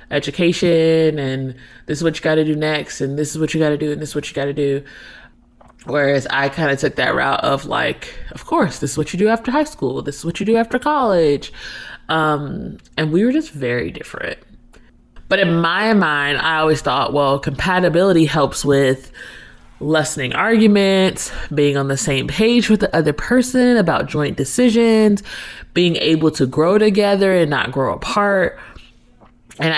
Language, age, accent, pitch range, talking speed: English, 20-39, American, 145-190 Hz, 190 wpm